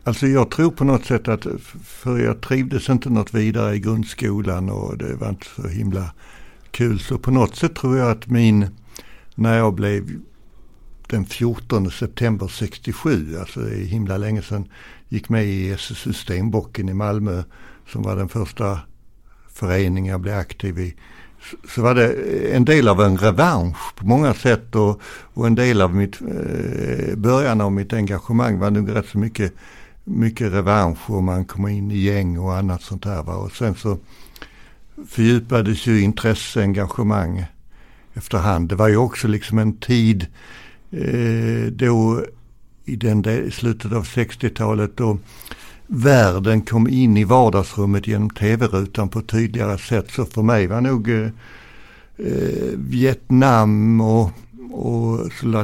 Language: Swedish